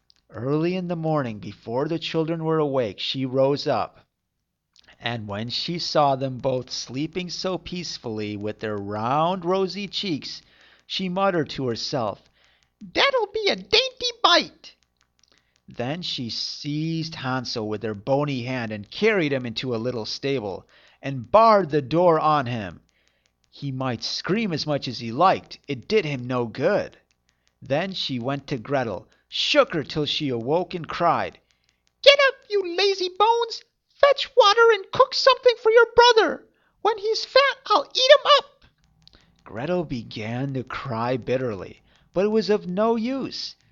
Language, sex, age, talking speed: English, male, 40-59, 155 wpm